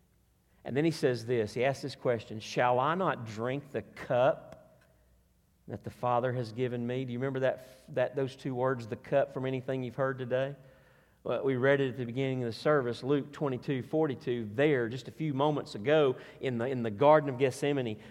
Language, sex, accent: English, male, American